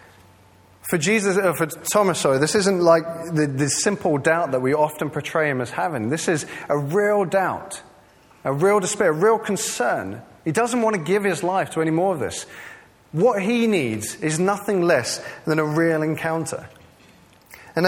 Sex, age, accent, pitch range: male, 30-49, British, 140-195 Hz